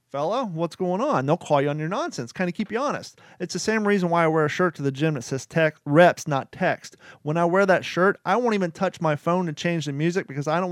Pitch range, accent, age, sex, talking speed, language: 145-175 Hz, American, 30-49, male, 280 wpm, English